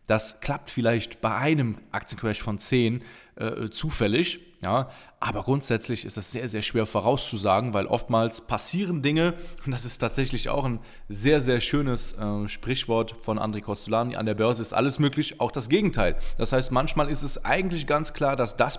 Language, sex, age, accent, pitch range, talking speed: German, male, 20-39, German, 110-135 Hz, 180 wpm